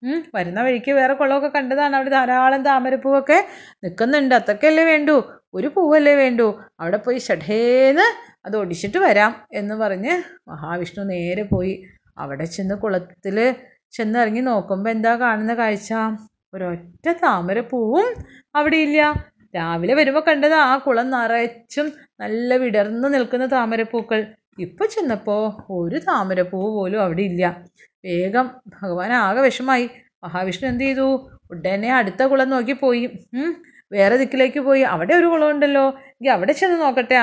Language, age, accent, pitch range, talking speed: Malayalam, 30-49, native, 200-270 Hz, 125 wpm